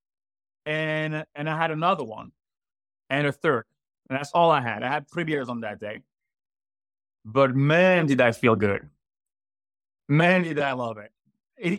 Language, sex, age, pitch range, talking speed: English, male, 20-39, 125-155 Hz, 170 wpm